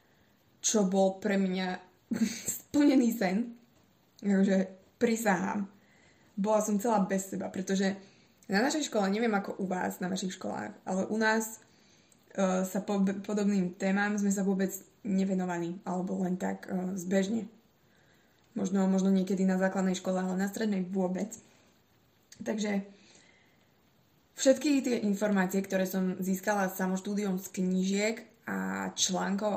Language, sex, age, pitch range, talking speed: Slovak, female, 20-39, 190-210 Hz, 130 wpm